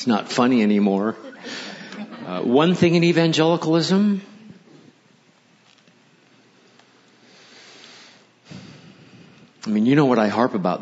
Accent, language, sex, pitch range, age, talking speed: American, English, male, 100-125 Hz, 50-69, 95 wpm